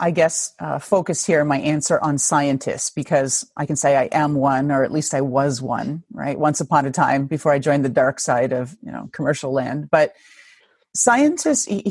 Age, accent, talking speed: 30-49, American, 200 wpm